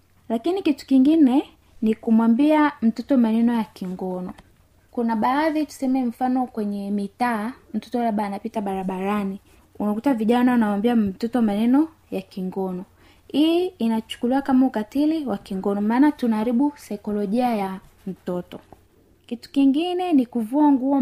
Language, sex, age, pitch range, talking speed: Swahili, female, 20-39, 210-275 Hz, 120 wpm